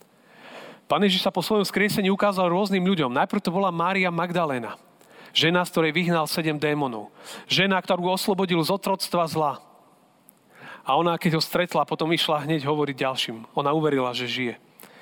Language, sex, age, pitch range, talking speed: Slovak, male, 40-59, 145-190 Hz, 160 wpm